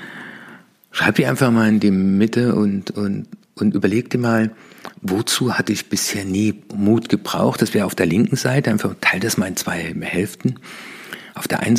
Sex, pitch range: male, 100-115 Hz